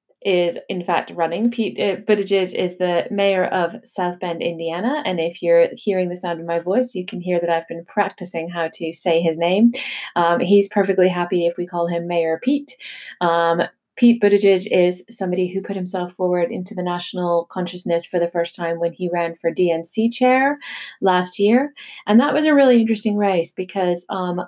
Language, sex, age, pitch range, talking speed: English, female, 30-49, 175-205 Hz, 195 wpm